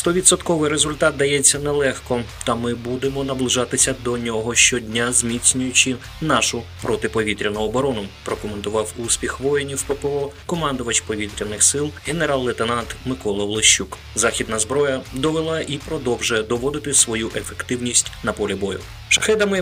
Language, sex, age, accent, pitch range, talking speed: Ukrainian, male, 20-39, native, 110-135 Hz, 115 wpm